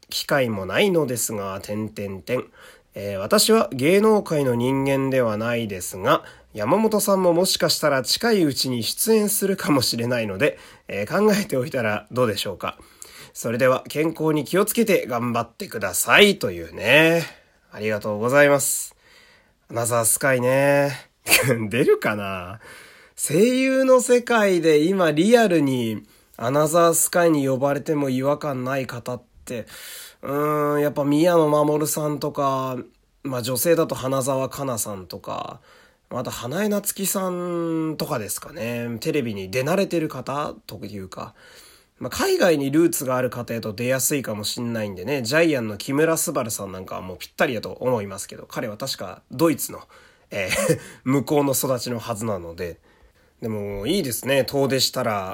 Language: Japanese